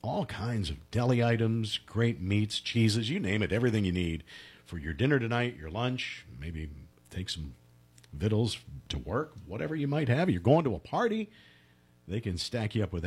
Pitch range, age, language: 80-115 Hz, 50-69, English